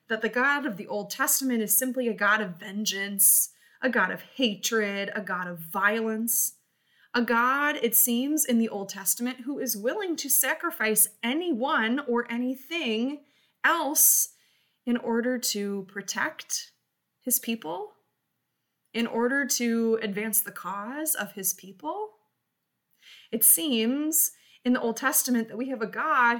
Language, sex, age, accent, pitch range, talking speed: English, female, 20-39, American, 220-285 Hz, 145 wpm